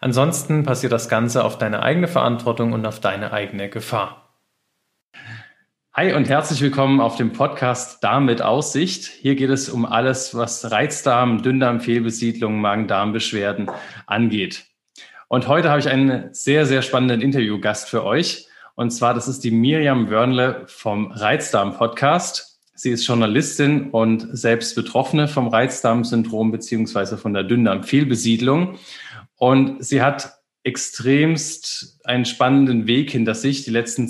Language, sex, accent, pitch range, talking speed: German, male, German, 115-135 Hz, 135 wpm